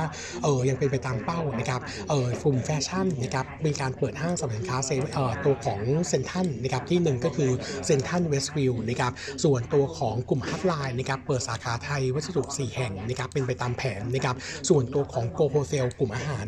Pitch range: 125-150 Hz